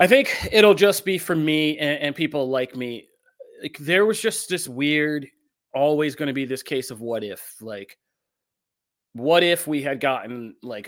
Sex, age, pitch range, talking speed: male, 30-49, 115-150 Hz, 190 wpm